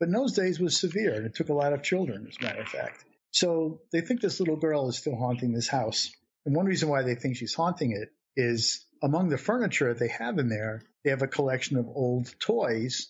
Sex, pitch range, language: male, 120-150 Hz, English